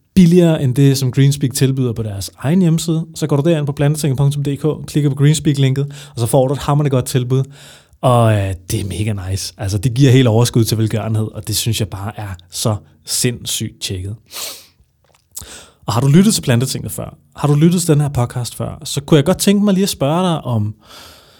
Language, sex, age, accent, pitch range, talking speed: Danish, male, 30-49, native, 110-145 Hz, 205 wpm